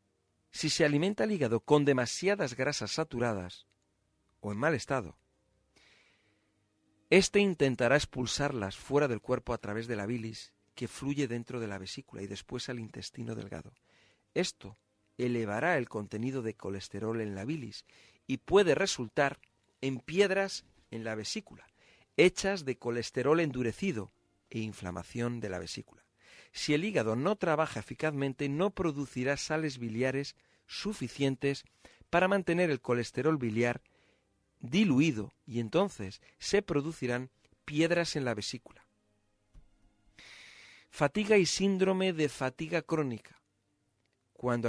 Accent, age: Spanish, 50-69